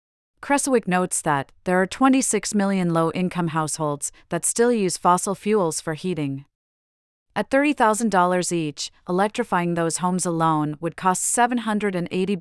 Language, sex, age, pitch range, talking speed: English, female, 30-49, 165-205 Hz, 125 wpm